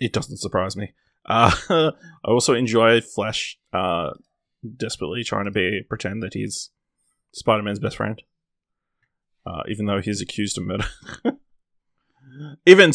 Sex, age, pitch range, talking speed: male, 20-39, 110-140 Hz, 135 wpm